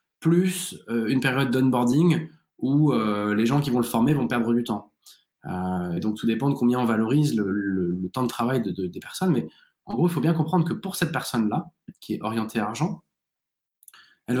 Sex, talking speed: male, 205 wpm